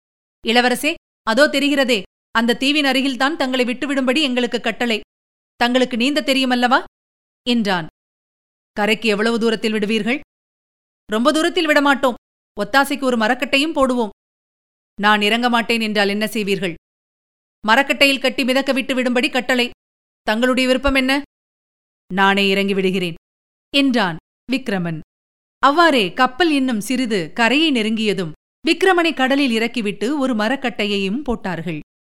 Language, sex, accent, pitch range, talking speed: Tamil, female, native, 215-280 Hz, 105 wpm